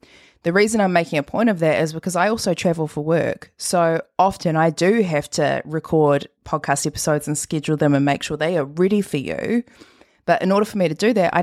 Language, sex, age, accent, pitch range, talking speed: English, female, 20-39, Australian, 150-185 Hz, 230 wpm